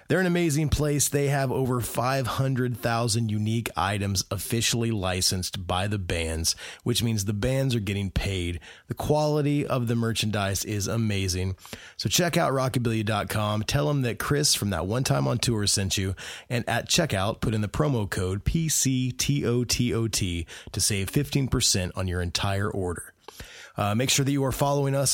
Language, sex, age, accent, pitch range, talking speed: English, male, 20-39, American, 100-135 Hz, 180 wpm